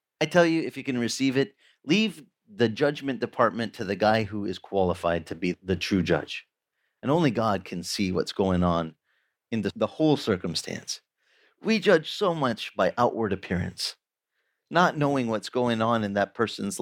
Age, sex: 40-59, male